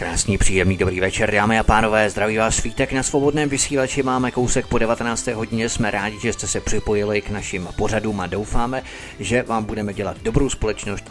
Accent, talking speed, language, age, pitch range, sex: native, 190 wpm, Czech, 30-49, 105-125 Hz, male